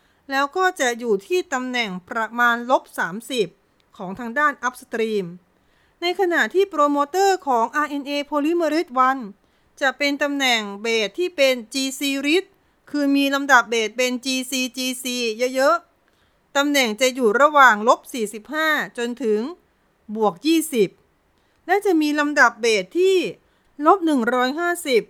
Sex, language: female, Thai